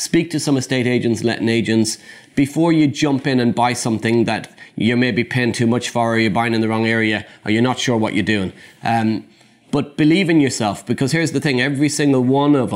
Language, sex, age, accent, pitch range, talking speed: English, male, 30-49, Irish, 110-130 Hz, 225 wpm